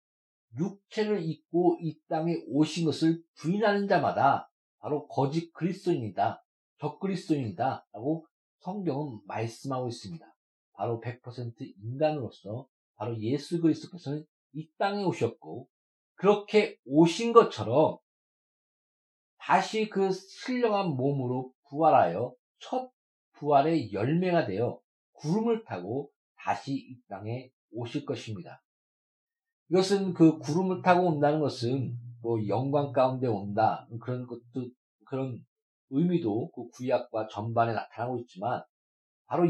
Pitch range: 130-175 Hz